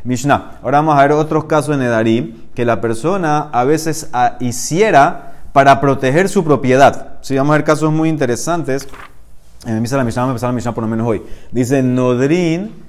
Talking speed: 175 wpm